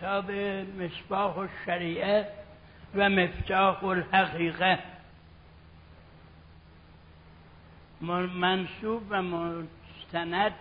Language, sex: Persian, male